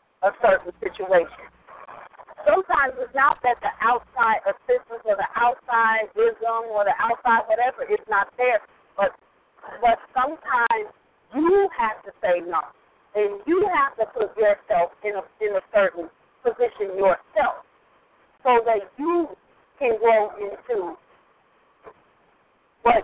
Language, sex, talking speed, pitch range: English, female, 130 wpm, 205-280 Hz